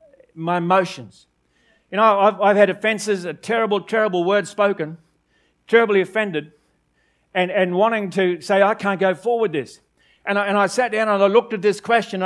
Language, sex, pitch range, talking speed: English, male, 190-225 Hz, 180 wpm